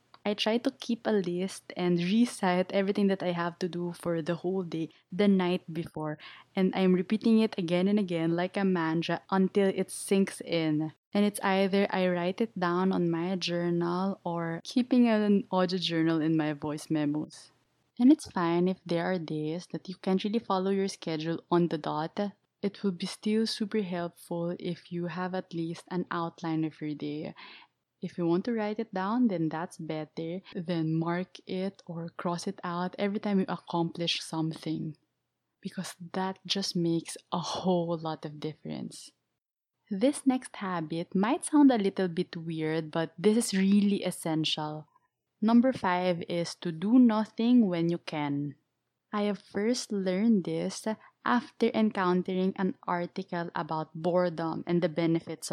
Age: 20-39